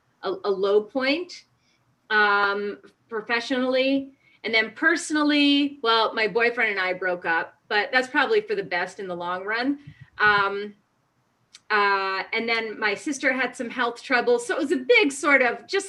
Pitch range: 210-275 Hz